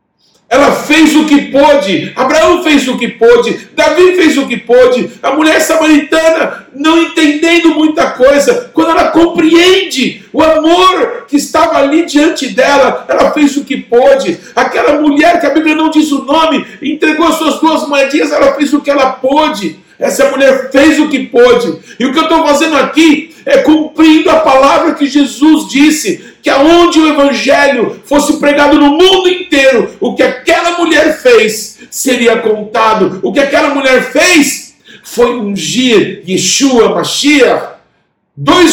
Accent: Brazilian